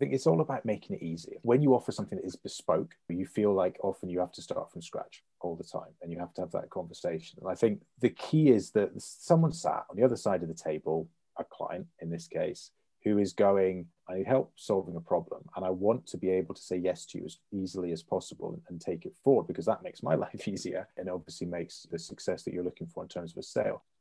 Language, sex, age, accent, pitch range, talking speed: English, male, 30-49, British, 90-125 Hz, 260 wpm